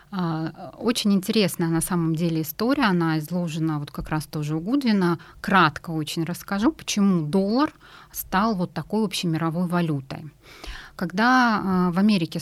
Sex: female